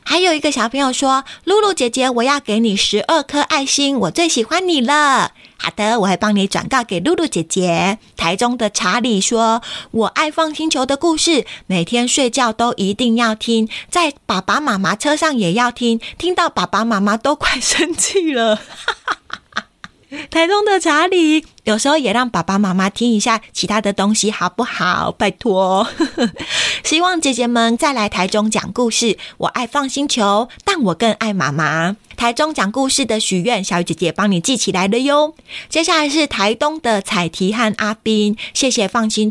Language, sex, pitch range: Chinese, female, 200-280 Hz